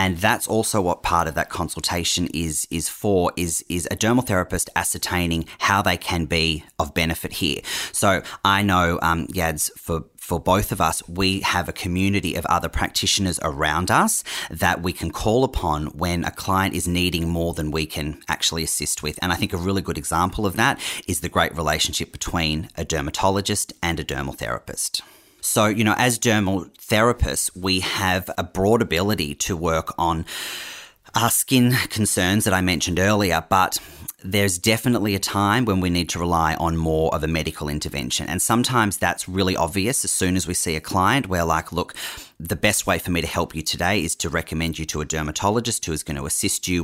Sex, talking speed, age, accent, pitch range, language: male, 195 wpm, 30-49, Australian, 80-100 Hz, English